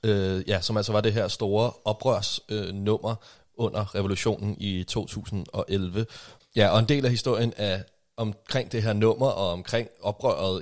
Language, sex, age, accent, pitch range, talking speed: Danish, male, 30-49, native, 90-110 Hz, 145 wpm